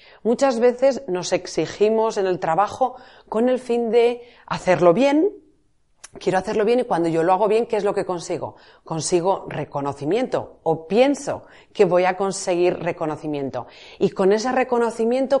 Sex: female